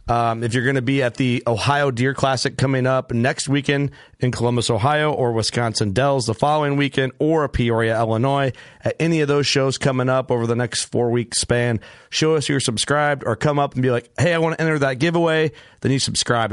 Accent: American